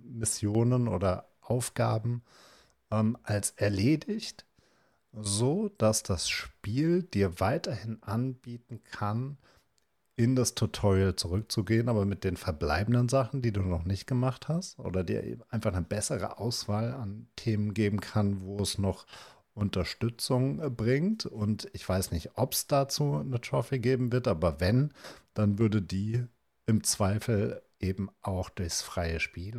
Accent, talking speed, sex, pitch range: German, 135 wpm, male, 95-115 Hz